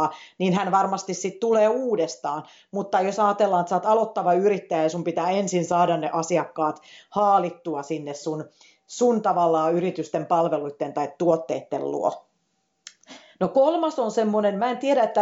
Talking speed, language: 155 wpm, Finnish